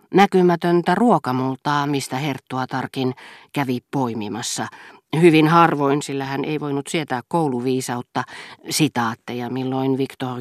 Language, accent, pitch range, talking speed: Finnish, native, 130-170 Hz, 105 wpm